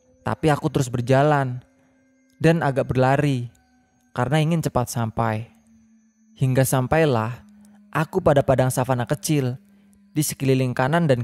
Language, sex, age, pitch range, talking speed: Indonesian, male, 20-39, 115-170 Hz, 115 wpm